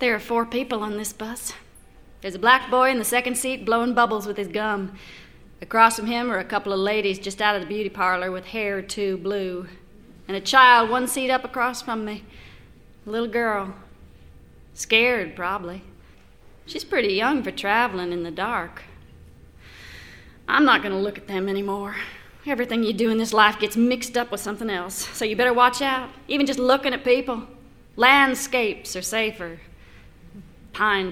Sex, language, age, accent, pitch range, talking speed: female, English, 30-49, American, 195-245 Hz, 180 wpm